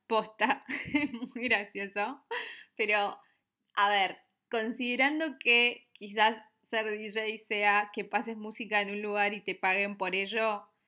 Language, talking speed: Spanish, 125 wpm